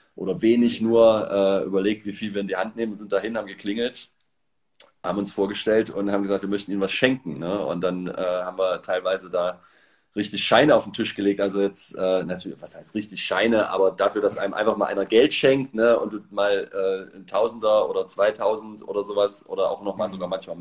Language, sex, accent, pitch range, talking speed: German, male, German, 100-120 Hz, 215 wpm